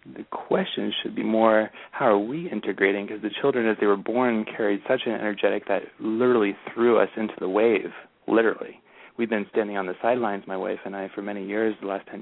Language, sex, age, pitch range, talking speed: English, male, 30-49, 100-115 Hz, 215 wpm